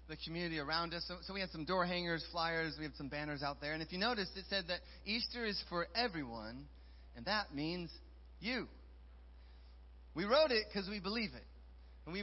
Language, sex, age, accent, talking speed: English, male, 30-49, American, 205 wpm